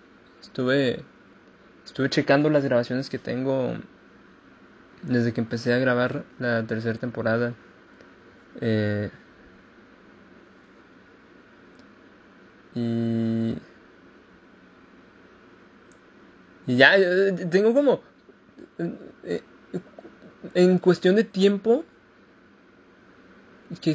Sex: male